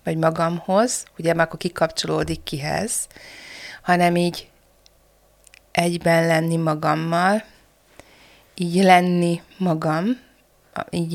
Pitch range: 165-190 Hz